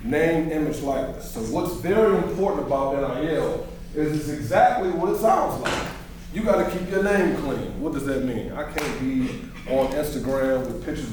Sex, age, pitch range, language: male, 30-49, 135-175 Hz, English